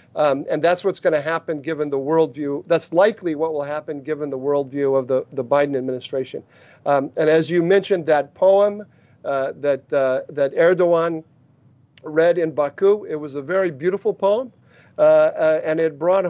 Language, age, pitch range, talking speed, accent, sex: English, 50-69, 140-180 Hz, 180 wpm, American, male